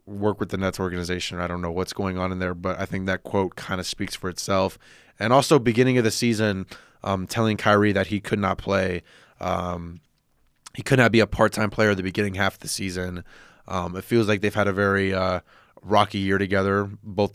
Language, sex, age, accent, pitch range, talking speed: English, male, 20-39, American, 95-110 Hz, 220 wpm